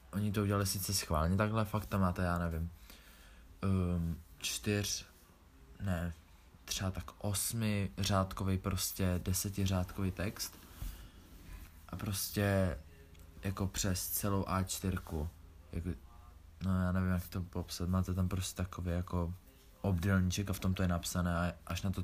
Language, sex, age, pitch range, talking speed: Czech, male, 20-39, 85-100 Hz, 135 wpm